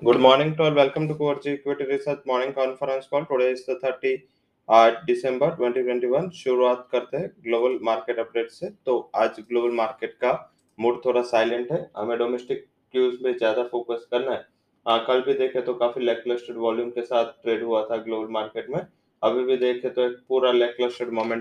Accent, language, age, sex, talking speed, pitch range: Indian, English, 20-39, male, 125 wpm, 115-130 Hz